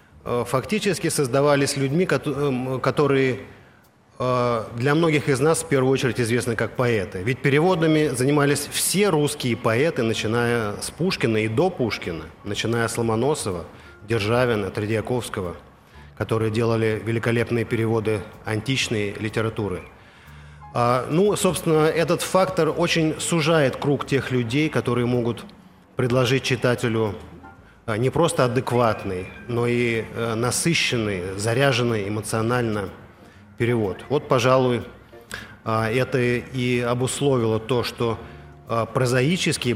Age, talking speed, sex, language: 30-49, 100 wpm, male, Russian